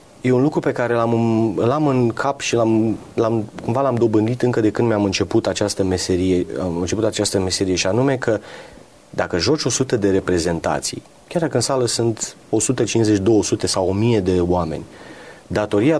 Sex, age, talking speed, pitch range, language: male, 30-49, 175 wpm, 95-125 Hz, Romanian